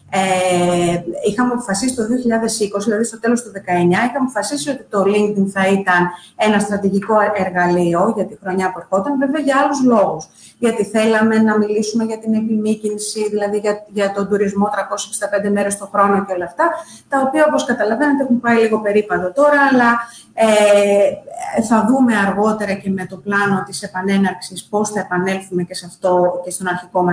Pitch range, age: 195-250 Hz, 30-49